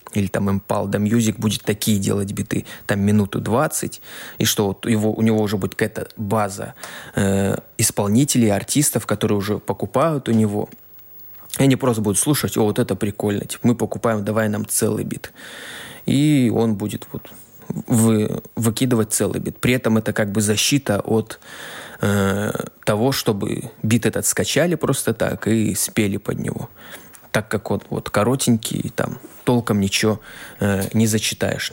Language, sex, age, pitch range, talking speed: Russian, male, 20-39, 105-120 Hz, 155 wpm